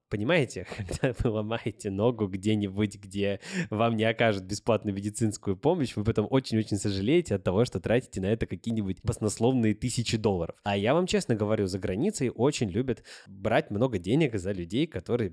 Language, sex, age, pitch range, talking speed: Russian, male, 20-39, 105-130 Hz, 165 wpm